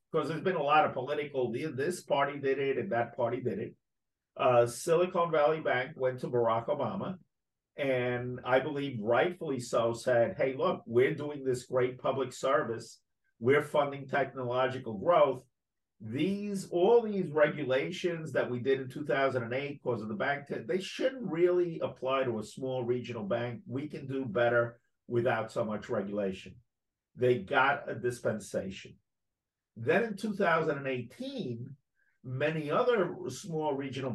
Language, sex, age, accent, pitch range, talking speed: English, male, 50-69, American, 120-165 Hz, 150 wpm